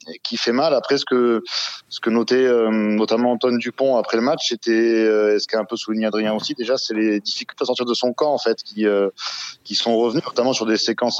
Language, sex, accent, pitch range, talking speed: French, male, French, 105-125 Hz, 245 wpm